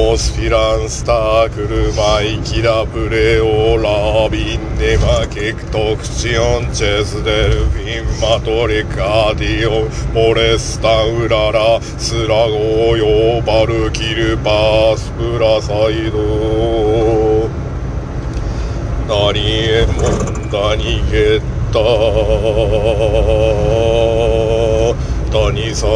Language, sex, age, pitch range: Japanese, male, 50-69, 110-115 Hz